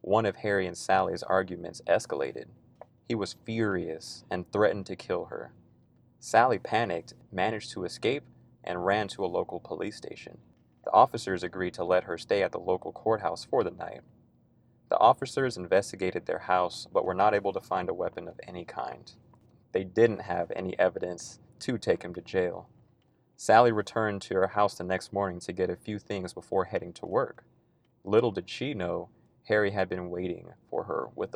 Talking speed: 180 wpm